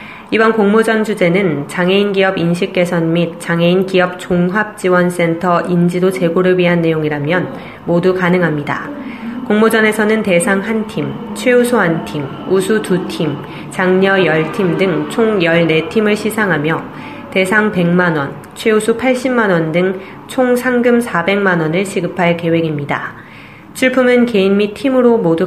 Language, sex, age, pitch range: Korean, female, 20-39, 170-210 Hz